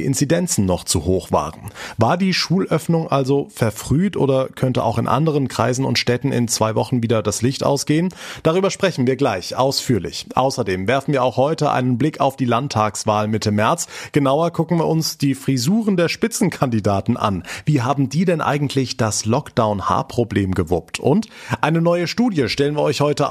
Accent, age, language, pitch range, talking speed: German, 30-49, German, 110-155 Hz, 170 wpm